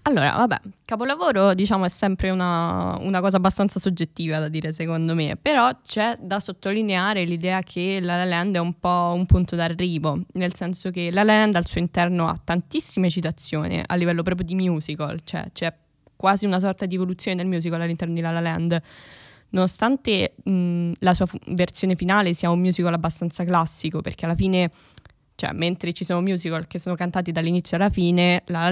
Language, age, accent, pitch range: Italian, 10-29, native, 170-190 Hz